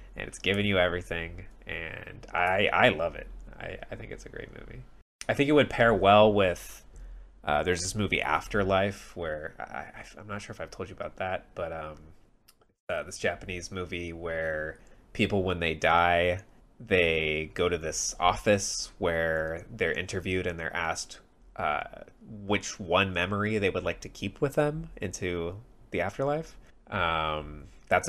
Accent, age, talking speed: American, 20-39, 170 wpm